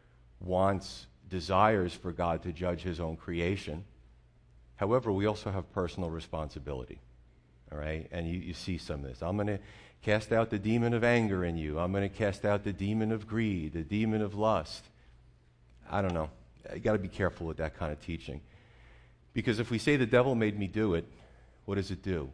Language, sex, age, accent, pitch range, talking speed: English, male, 50-69, American, 75-105 Hz, 200 wpm